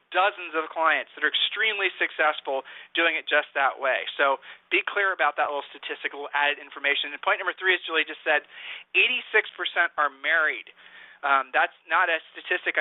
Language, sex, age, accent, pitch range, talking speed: English, male, 40-59, American, 145-185 Hz, 180 wpm